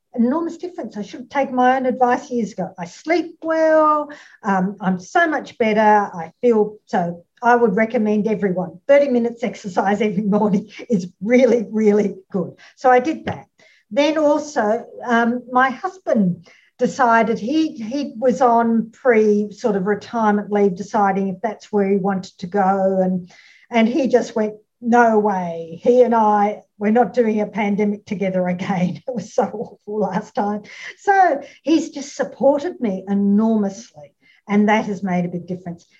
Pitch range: 195-250 Hz